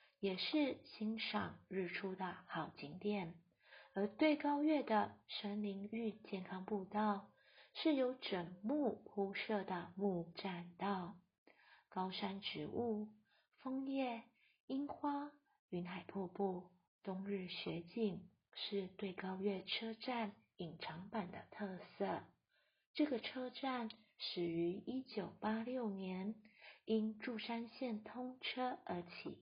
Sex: female